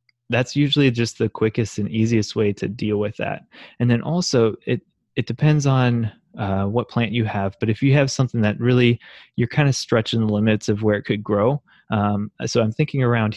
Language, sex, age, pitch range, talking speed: English, male, 20-39, 105-125 Hz, 210 wpm